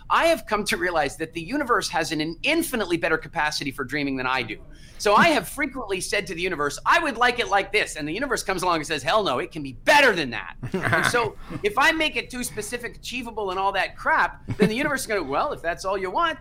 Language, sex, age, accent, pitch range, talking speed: English, male, 40-59, American, 150-235 Hz, 260 wpm